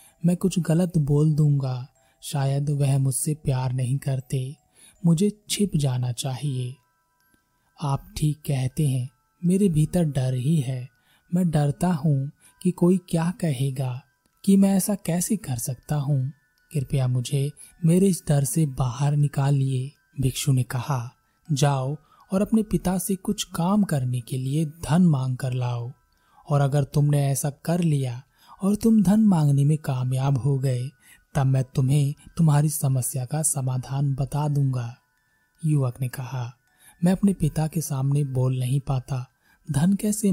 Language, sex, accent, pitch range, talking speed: Hindi, male, native, 130-160 Hz, 145 wpm